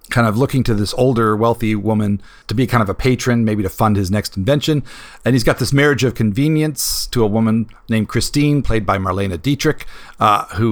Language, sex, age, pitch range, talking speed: English, male, 40-59, 105-135 Hz, 215 wpm